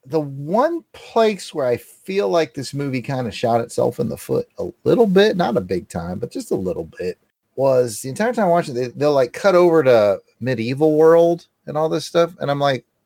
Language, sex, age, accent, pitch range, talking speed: English, male, 30-49, American, 120-175 Hz, 225 wpm